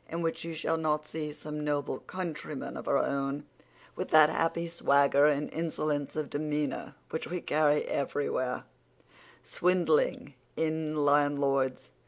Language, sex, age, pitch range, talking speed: English, female, 50-69, 150-170 Hz, 135 wpm